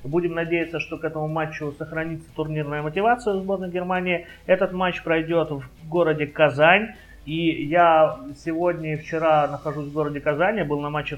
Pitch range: 140-165 Hz